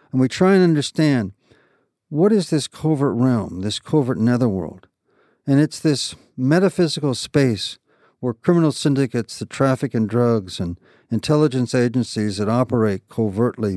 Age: 60-79